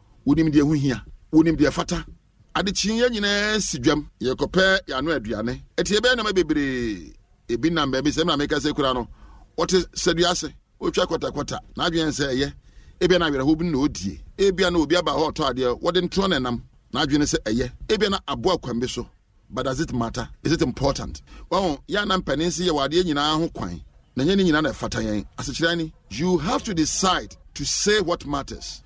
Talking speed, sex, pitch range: 75 wpm, male, 130-180 Hz